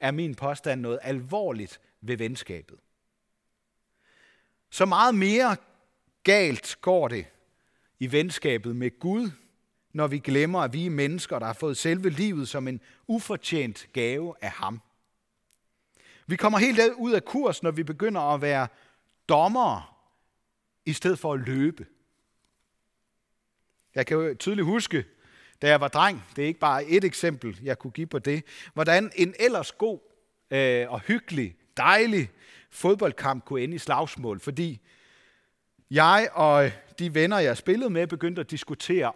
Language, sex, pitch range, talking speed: Danish, male, 135-195 Hz, 145 wpm